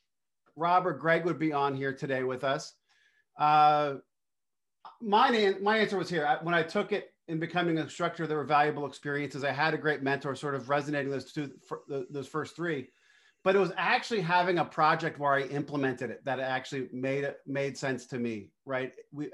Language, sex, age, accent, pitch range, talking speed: English, male, 40-59, American, 135-165 Hz, 205 wpm